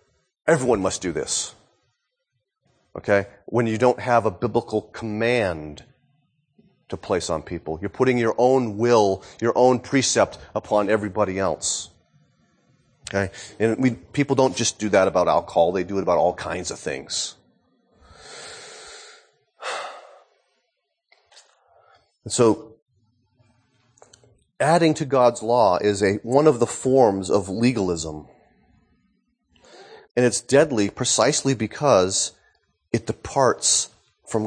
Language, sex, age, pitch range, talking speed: English, male, 30-49, 105-140 Hz, 115 wpm